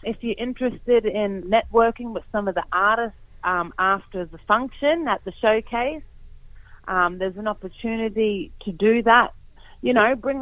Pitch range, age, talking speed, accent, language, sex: 185-225 Hz, 30-49, 155 wpm, Australian, English, female